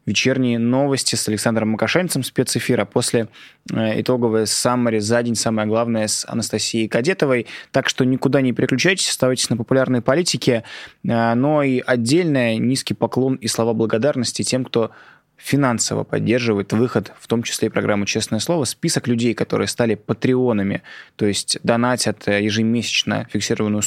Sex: male